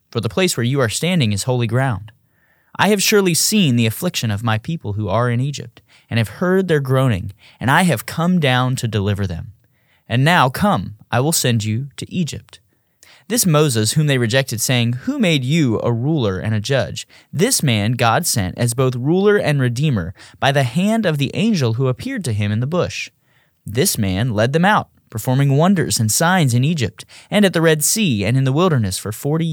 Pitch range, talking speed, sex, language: 115-170 Hz, 210 wpm, male, English